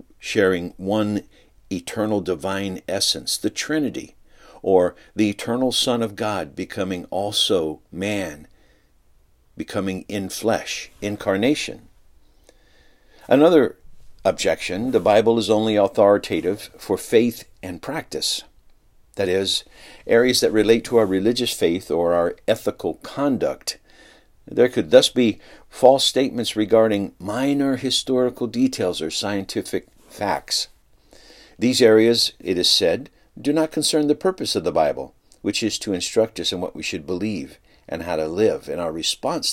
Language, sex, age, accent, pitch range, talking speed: English, male, 60-79, American, 95-120 Hz, 130 wpm